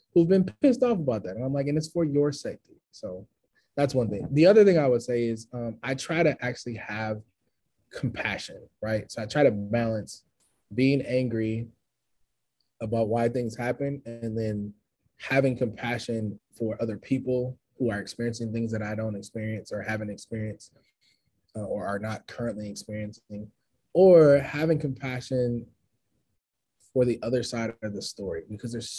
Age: 20-39